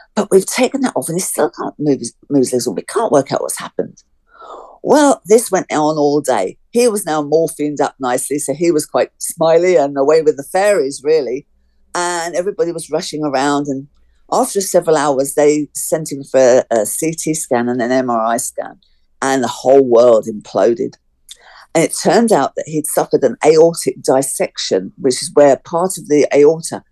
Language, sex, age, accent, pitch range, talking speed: English, female, 50-69, British, 135-180 Hz, 190 wpm